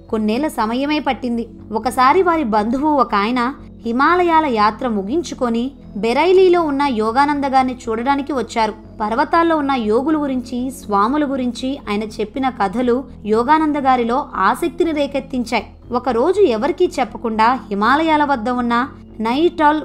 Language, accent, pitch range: Telugu, native, 220-285 Hz